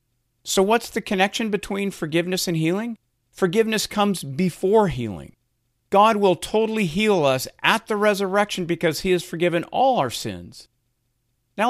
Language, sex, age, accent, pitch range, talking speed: English, male, 50-69, American, 130-195 Hz, 145 wpm